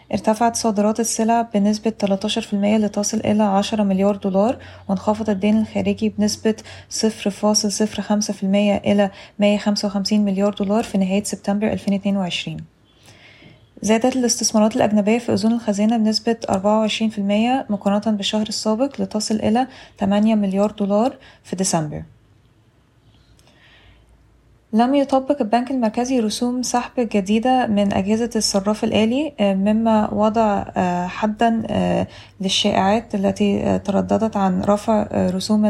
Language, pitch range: Arabic, 195-220 Hz